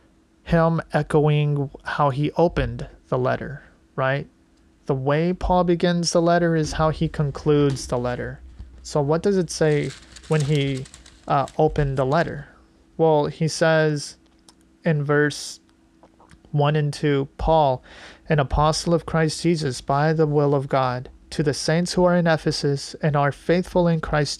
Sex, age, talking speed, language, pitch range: male, 30-49, 150 wpm, English, 135-160 Hz